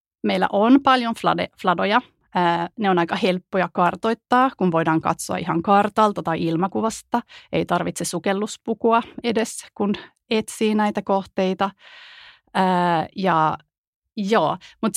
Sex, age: female, 30-49